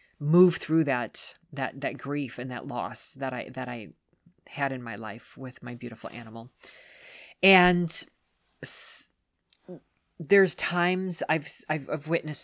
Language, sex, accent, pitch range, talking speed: English, female, American, 135-165 Hz, 135 wpm